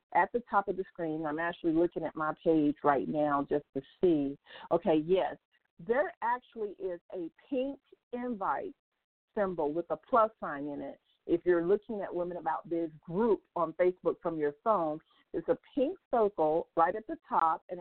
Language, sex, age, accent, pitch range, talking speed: English, female, 50-69, American, 165-230 Hz, 180 wpm